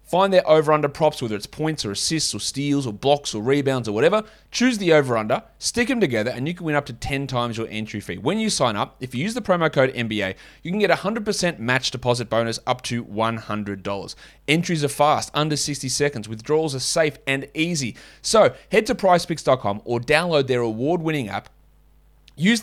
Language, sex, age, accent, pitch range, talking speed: English, male, 30-49, Australian, 125-170 Hz, 205 wpm